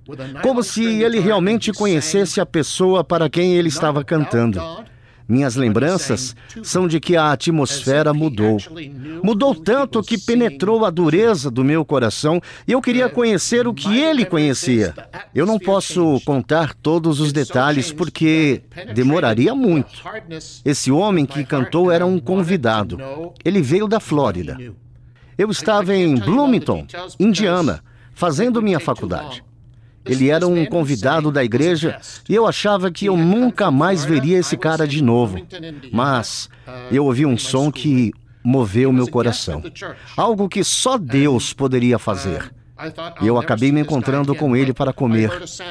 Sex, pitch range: male, 125-185 Hz